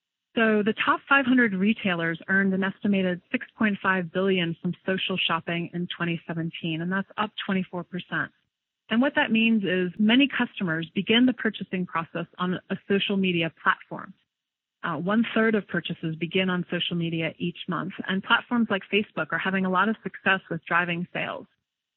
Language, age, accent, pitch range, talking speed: English, 30-49, American, 180-215 Hz, 160 wpm